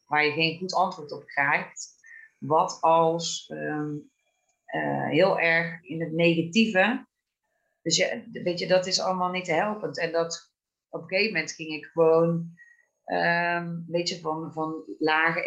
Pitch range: 155-185 Hz